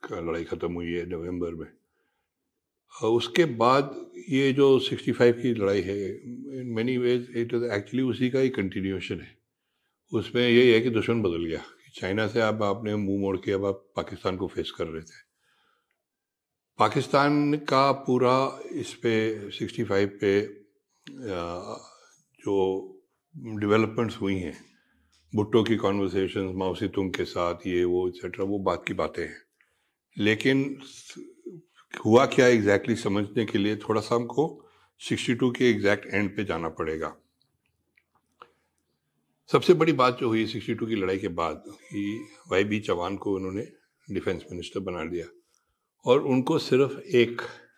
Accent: native